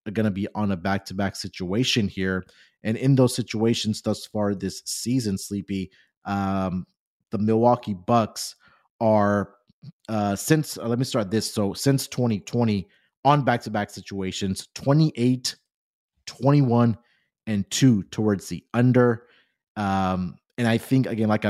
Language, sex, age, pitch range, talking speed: English, male, 30-49, 100-120 Hz, 135 wpm